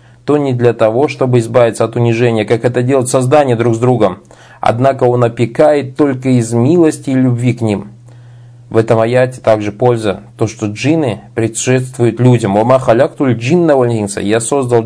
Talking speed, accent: 150 wpm, native